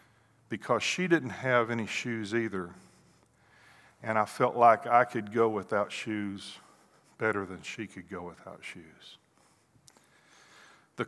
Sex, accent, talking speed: male, American, 130 wpm